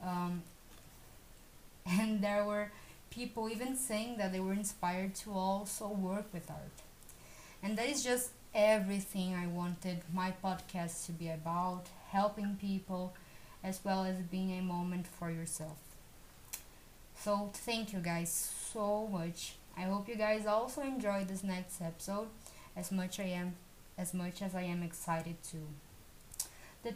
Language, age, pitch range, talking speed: English, 20-39, 180-210 Hz, 145 wpm